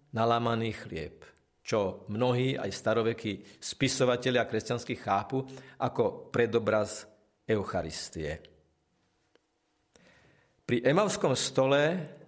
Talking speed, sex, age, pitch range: 80 wpm, male, 50-69, 110-140 Hz